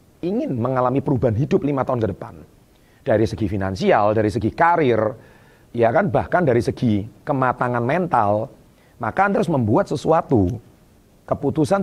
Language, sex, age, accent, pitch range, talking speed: Indonesian, male, 30-49, native, 105-130 Hz, 135 wpm